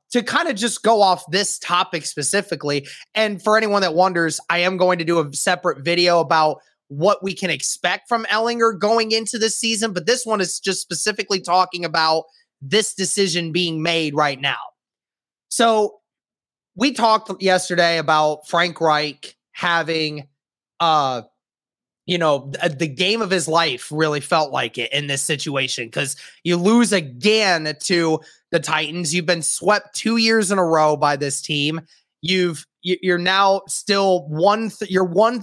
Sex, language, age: male, English, 20-39